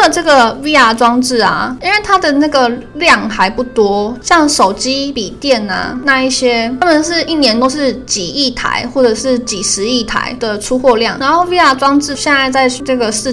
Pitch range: 235-275 Hz